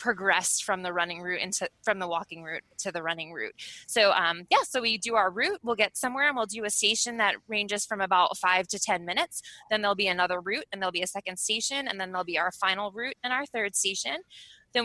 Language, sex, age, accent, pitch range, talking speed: English, female, 20-39, American, 185-235 Hz, 245 wpm